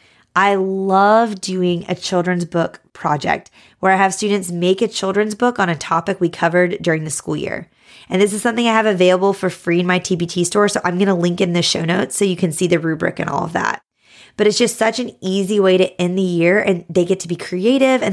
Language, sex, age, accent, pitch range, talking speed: English, female, 20-39, American, 175-200 Hz, 240 wpm